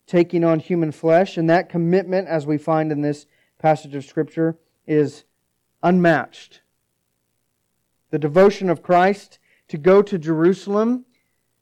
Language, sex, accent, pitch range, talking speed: English, male, American, 120-165 Hz, 130 wpm